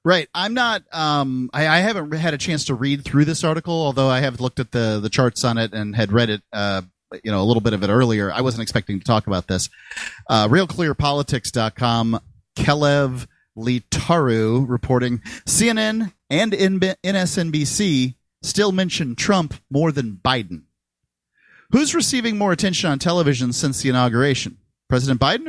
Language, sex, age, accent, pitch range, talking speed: English, male, 40-59, American, 115-155 Hz, 165 wpm